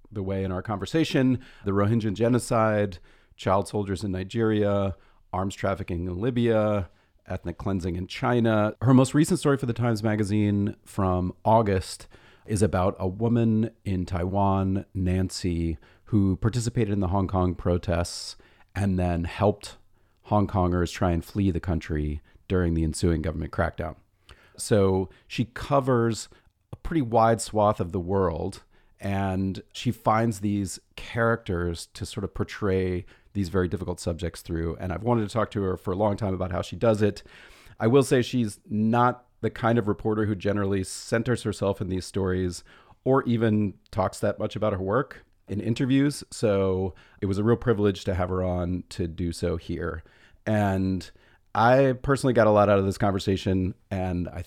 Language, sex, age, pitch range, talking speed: English, male, 40-59, 90-110 Hz, 165 wpm